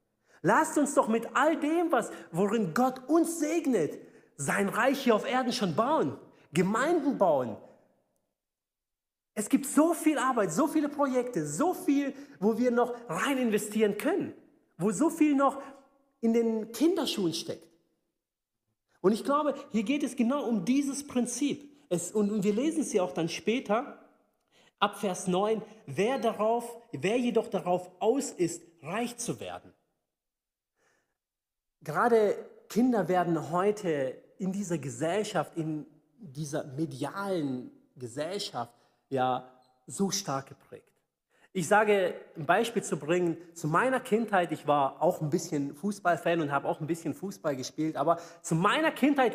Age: 40-59